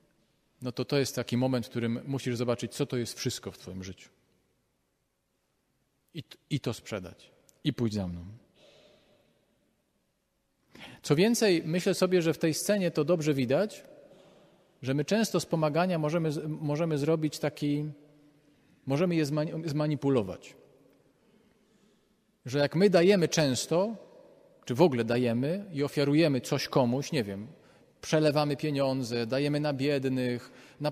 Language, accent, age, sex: Polish, native, 40-59, male